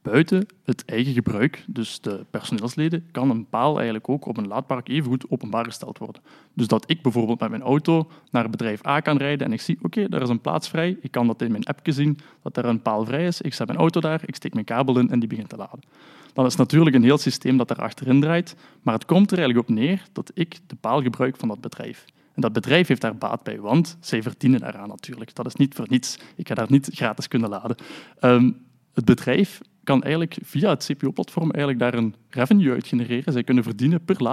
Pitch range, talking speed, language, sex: 120-160 Hz, 240 wpm, Dutch, male